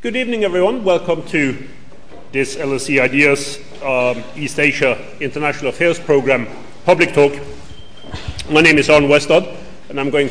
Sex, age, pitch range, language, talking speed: male, 40-59, 125-150 Hz, English, 140 wpm